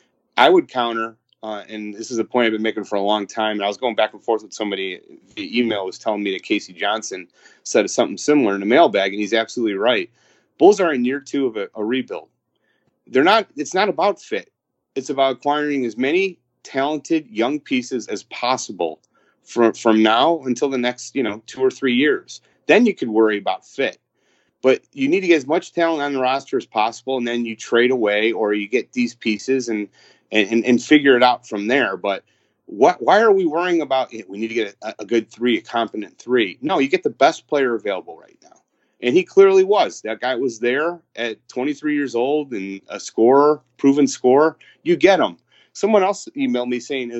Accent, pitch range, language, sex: American, 110-155 Hz, English, male